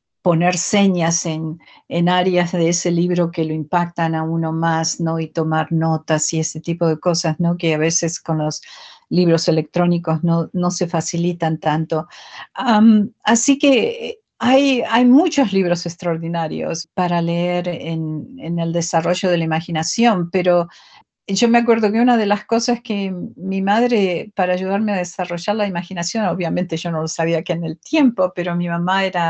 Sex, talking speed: female, 170 wpm